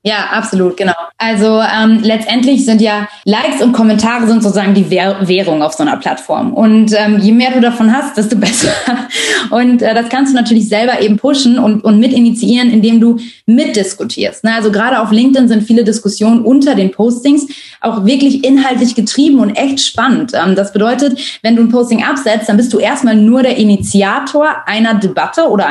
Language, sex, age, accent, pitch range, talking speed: German, female, 20-39, German, 210-250 Hz, 185 wpm